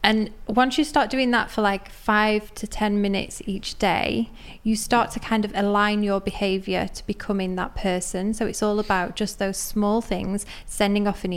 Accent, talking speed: British, 195 wpm